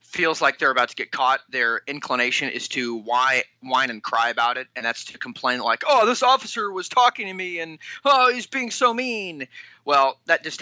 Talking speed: 210 wpm